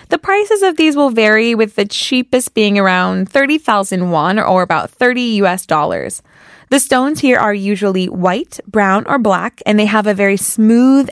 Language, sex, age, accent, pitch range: Korean, female, 20-39, American, 190-255 Hz